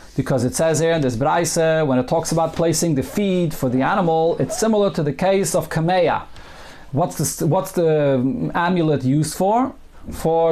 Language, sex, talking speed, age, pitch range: English, male, 170 wpm, 40-59, 150-180 Hz